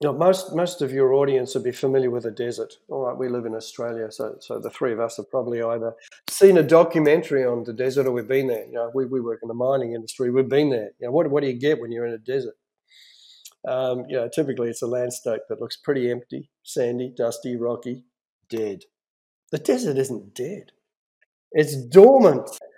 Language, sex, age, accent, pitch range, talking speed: English, male, 50-69, Australian, 125-150 Hz, 220 wpm